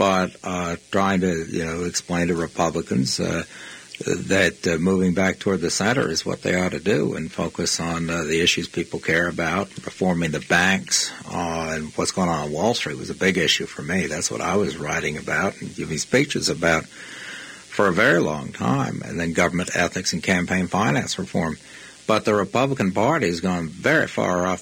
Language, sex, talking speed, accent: English, male, 195 wpm, American